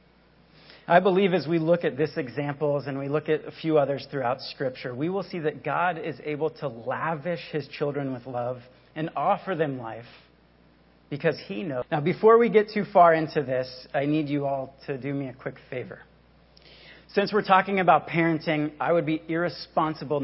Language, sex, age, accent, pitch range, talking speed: English, male, 40-59, American, 140-190 Hz, 190 wpm